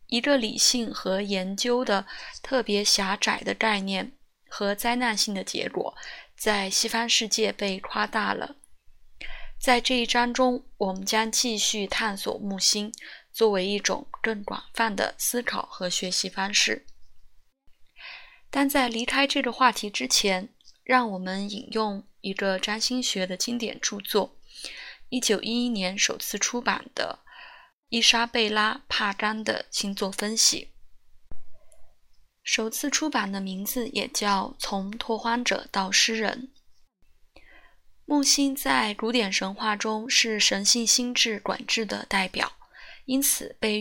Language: Chinese